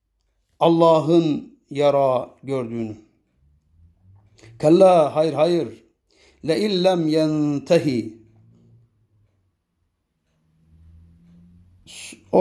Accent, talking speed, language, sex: native, 50 wpm, Turkish, male